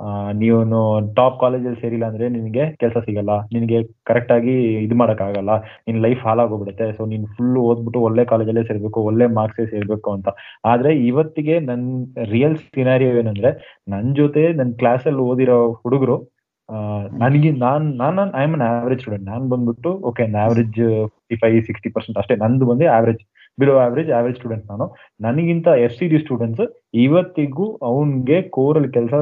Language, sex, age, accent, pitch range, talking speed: Kannada, male, 20-39, native, 115-140 Hz, 155 wpm